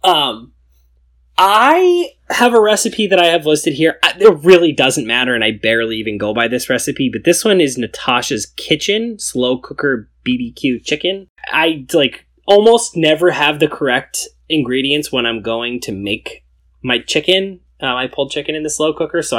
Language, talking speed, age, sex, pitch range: English, 175 wpm, 10-29, male, 120-185 Hz